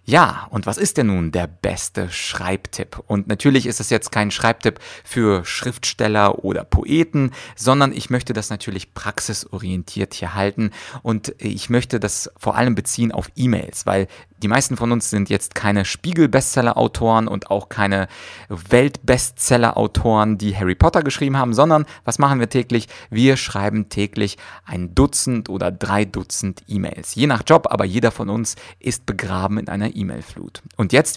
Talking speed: 165 wpm